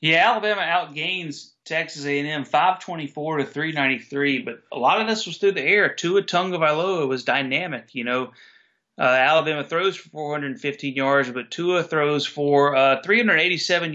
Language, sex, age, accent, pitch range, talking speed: English, male, 30-49, American, 130-155 Hz, 150 wpm